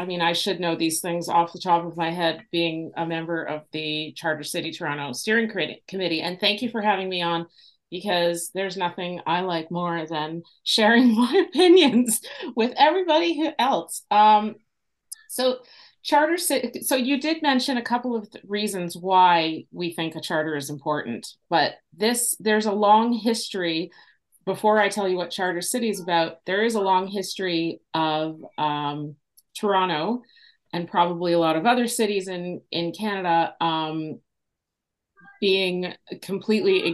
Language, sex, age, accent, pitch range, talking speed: English, female, 40-59, American, 165-210 Hz, 160 wpm